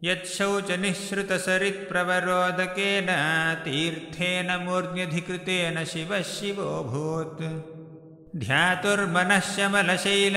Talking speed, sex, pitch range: 95 wpm, male, 160-185 Hz